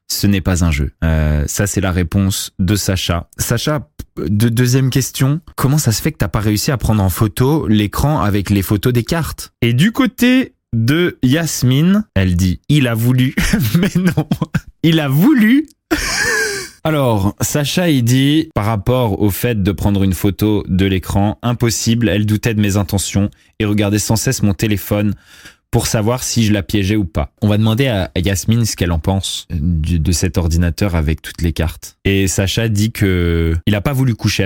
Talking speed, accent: 195 wpm, French